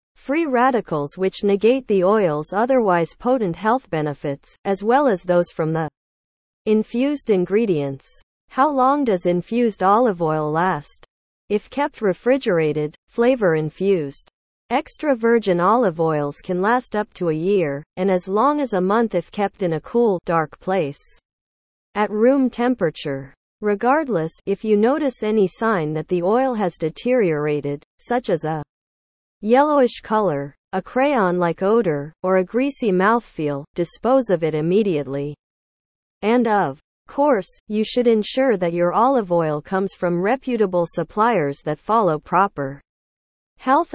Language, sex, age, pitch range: English, female, 40-59, 165-235 Hz